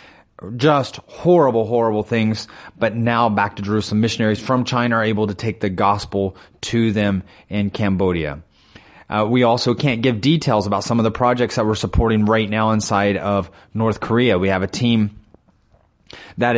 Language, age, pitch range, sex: English, 30-49, 105-120 Hz, male